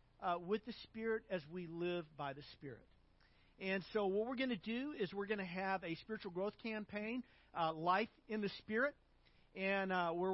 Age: 50-69